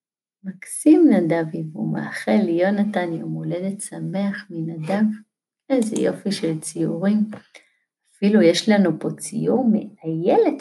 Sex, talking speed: female, 105 wpm